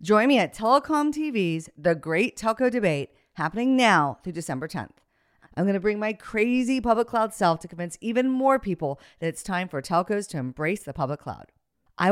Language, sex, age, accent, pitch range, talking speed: English, female, 40-59, American, 160-235 Hz, 195 wpm